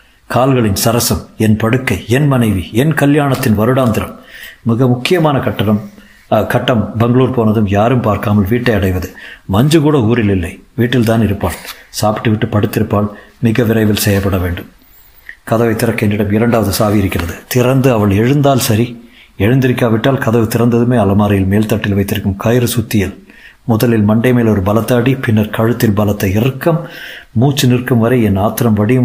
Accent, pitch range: native, 105-125 Hz